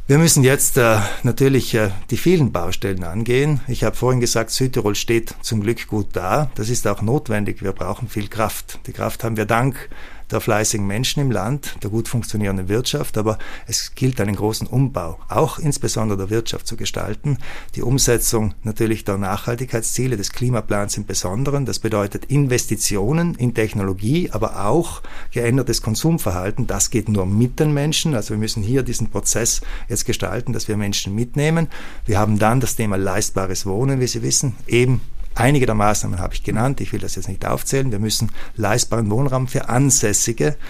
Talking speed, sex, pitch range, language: 175 wpm, male, 105-130 Hz, German